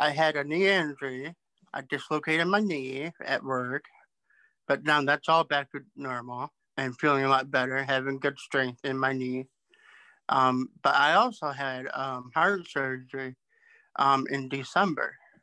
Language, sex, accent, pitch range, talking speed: English, male, American, 135-160 Hz, 155 wpm